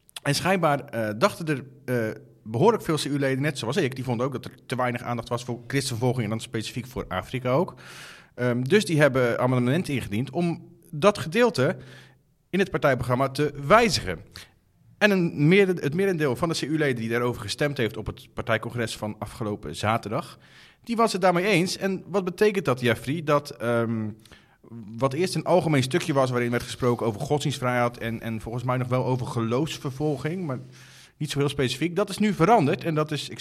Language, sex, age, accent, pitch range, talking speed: Dutch, male, 40-59, Dutch, 120-165 Hz, 190 wpm